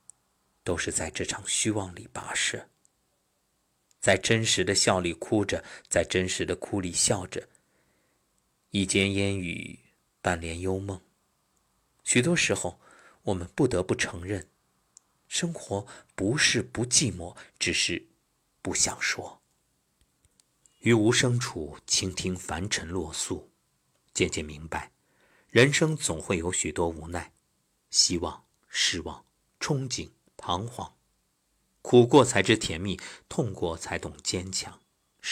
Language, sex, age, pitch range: Chinese, male, 50-69, 80-115 Hz